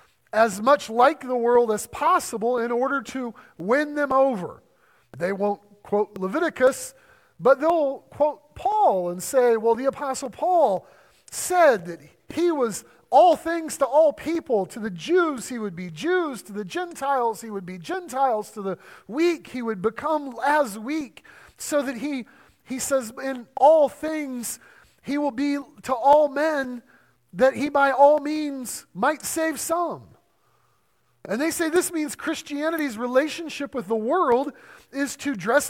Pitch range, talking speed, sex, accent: 220-295 Hz, 155 wpm, male, American